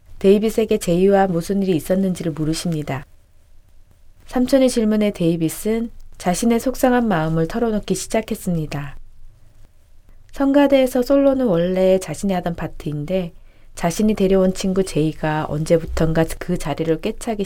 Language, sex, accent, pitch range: Korean, female, native, 155-205 Hz